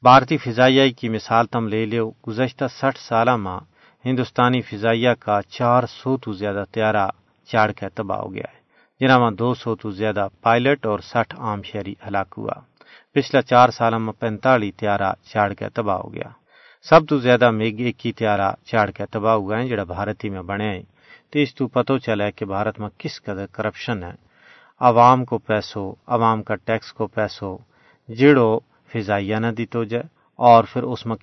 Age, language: 40-59, Urdu